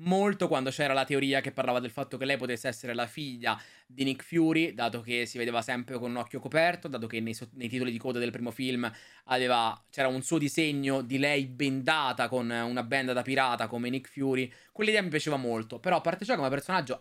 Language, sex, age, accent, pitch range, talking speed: Italian, male, 20-39, native, 125-170 Hz, 225 wpm